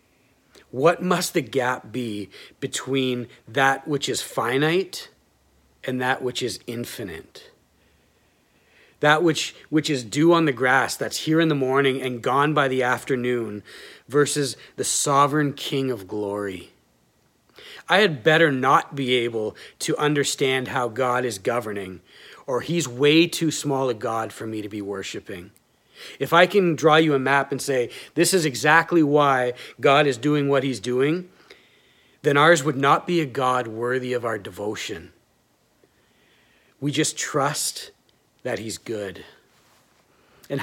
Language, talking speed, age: English, 150 wpm, 40-59